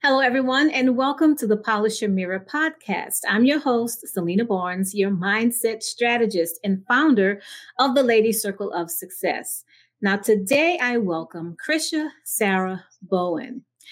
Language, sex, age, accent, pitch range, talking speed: English, female, 30-49, American, 195-260 Hz, 140 wpm